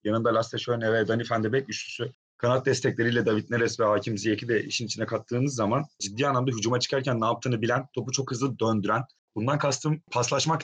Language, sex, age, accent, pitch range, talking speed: Turkish, male, 30-49, native, 120-150 Hz, 180 wpm